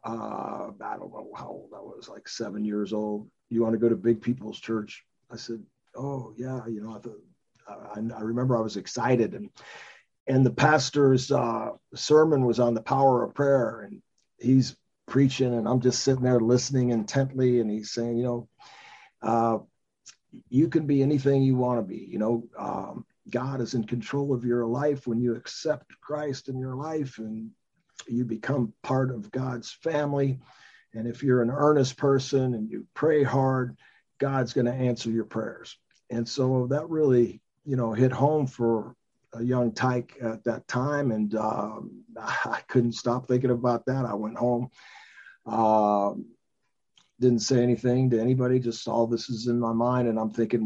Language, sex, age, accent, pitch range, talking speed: English, male, 50-69, American, 115-130 Hz, 180 wpm